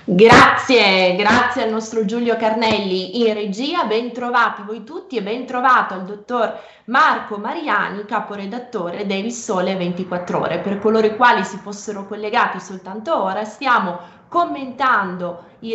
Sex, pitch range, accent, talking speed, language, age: female, 190-230 Hz, native, 135 wpm, Italian, 20-39